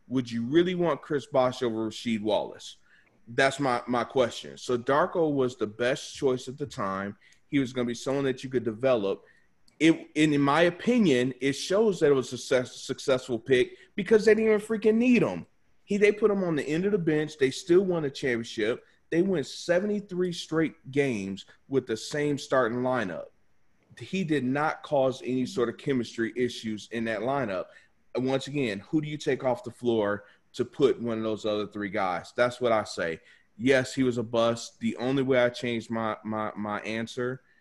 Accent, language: American, English